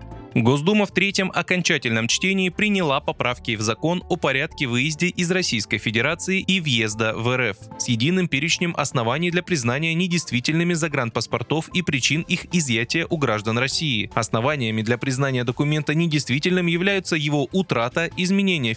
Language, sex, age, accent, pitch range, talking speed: Russian, male, 20-39, native, 120-180 Hz, 140 wpm